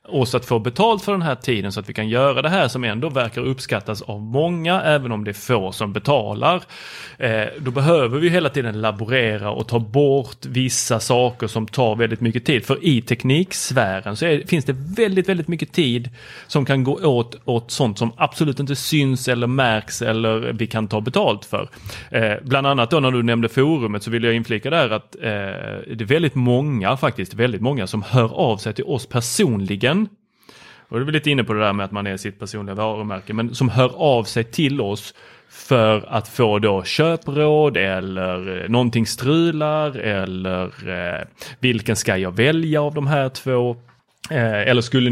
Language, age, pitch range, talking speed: Swedish, 30-49, 110-140 Hz, 185 wpm